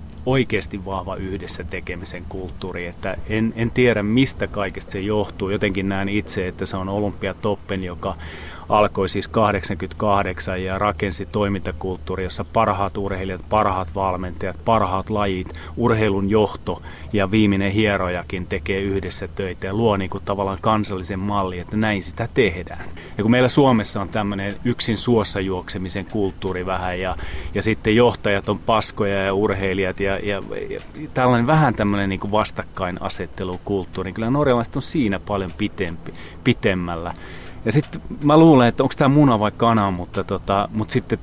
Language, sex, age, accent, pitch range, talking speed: Finnish, male, 30-49, native, 90-105 Hz, 150 wpm